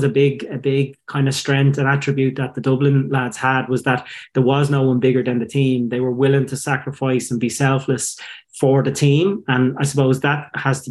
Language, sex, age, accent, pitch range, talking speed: English, male, 30-49, Irish, 130-140 Hz, 225 wpm